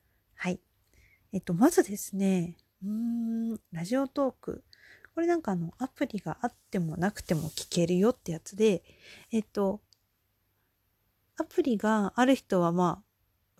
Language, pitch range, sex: Japanese, 170-245 Hz, female